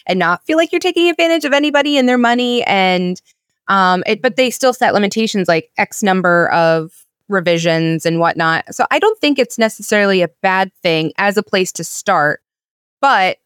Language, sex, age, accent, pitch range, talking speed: English, female, 20-39, American, 170-210 Hz, 185 wpm